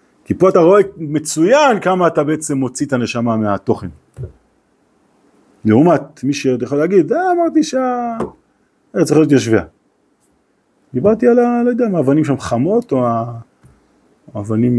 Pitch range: 110-160 Hz